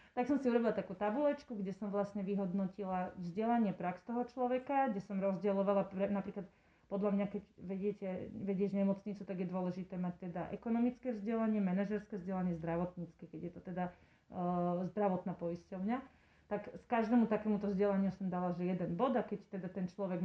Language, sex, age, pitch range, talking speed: Slovak, female, 30-49, 185-210 Hz, 170 wpm